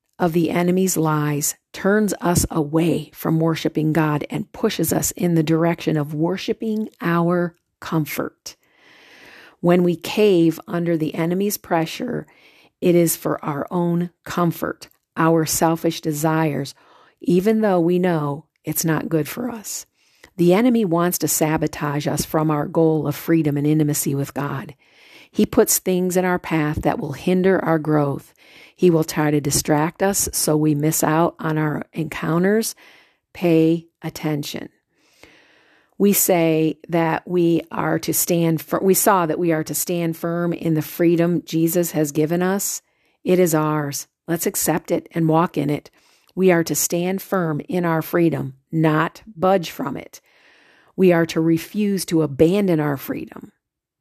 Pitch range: 155-180 Hz